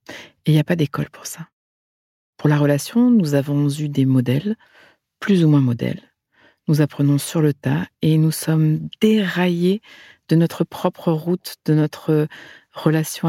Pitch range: 140-170 Hz